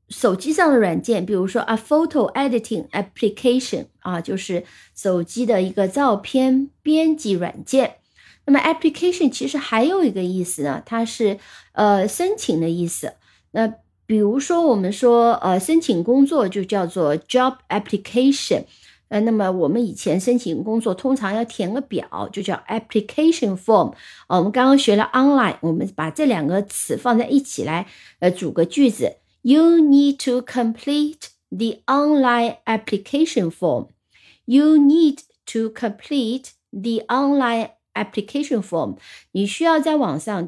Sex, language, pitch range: female, Chinese, 200-275 Hz